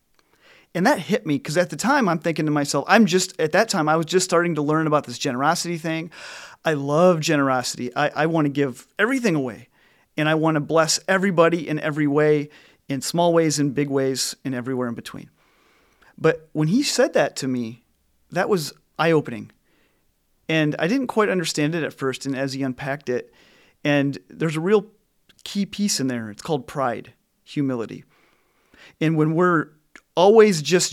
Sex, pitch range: male, 140-170 Hz